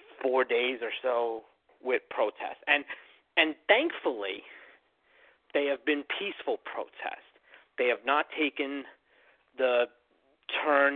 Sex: male